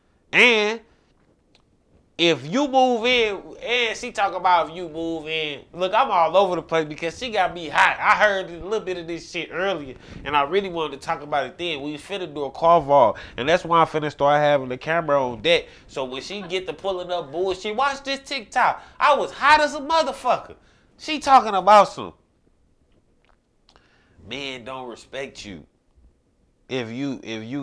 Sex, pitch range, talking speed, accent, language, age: male, 155-215 Hz, 195 wpm, American, English, 20-39